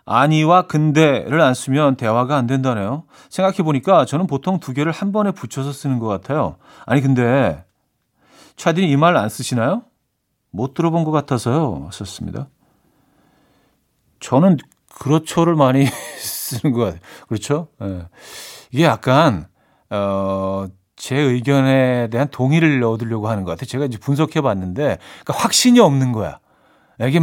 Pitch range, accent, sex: 115-155 Hz, native, male